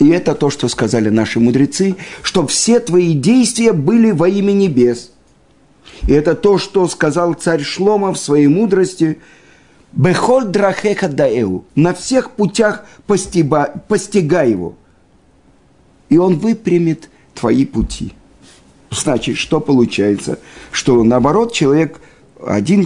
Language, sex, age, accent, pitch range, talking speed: Russian, male, 50-69, native, 110-175 Hz, 120 wpm